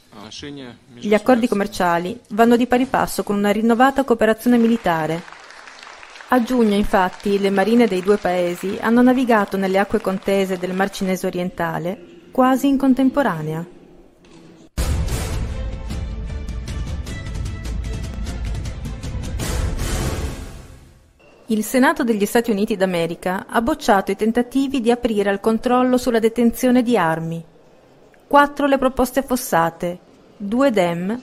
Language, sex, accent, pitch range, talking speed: Italian, female, native, 175-245 Hz, 110 wpm